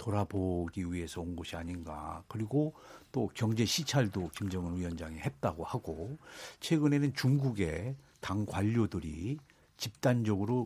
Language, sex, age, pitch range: Korean, male, 50-69, 100-145 Hz